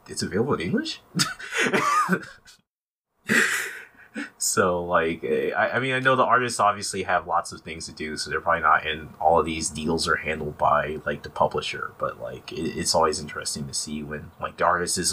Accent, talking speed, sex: American, 190 wpm, male